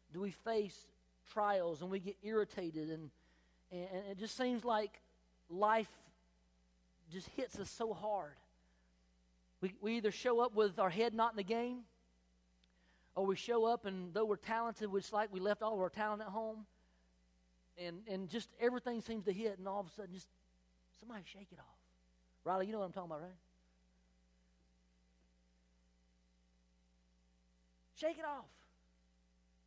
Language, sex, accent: English, male, American